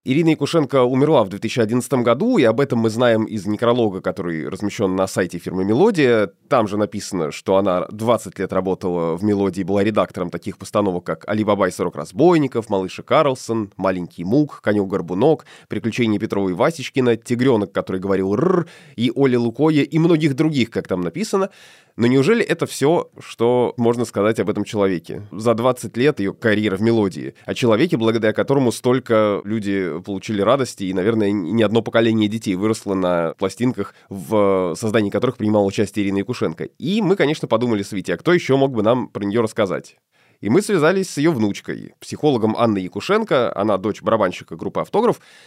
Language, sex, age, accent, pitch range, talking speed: Russian, male, 20-39, native, 100-125 Hz, 170 wpm